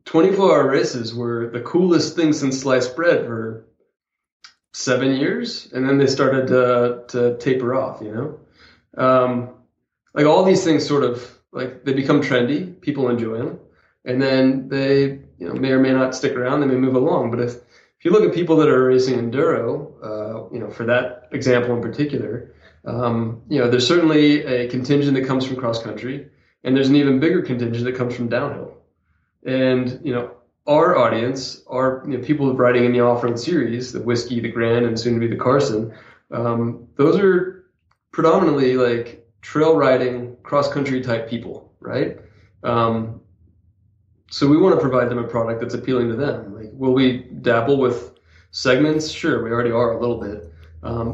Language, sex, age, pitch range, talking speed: English, male, 20-39, 115-135 Hz, 180 wpm